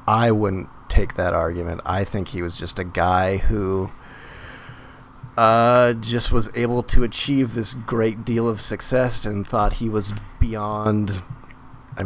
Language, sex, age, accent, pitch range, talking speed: English, male, 30-49, American, 95-115 Hz, 150 wpm